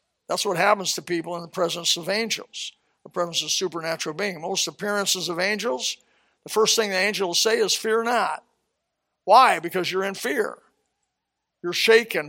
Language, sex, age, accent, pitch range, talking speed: English, male, 60-79, American, 170-215 Hz, 170 wpm